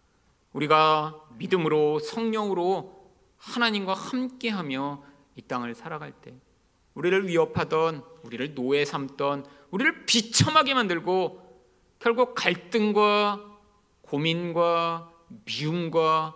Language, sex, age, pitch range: Korean, male, 40-59, 140-210 Hz